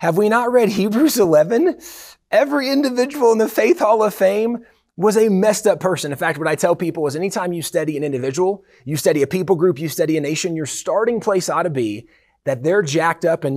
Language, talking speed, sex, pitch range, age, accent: English, 225 wpm, male, 150-220 Hz, 30-49, American